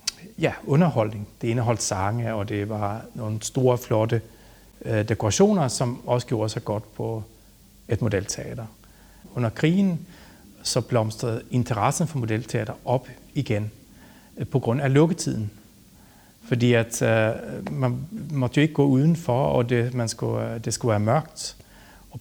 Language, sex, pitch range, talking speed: Danish, male, 110-130 Hz, 145 wpm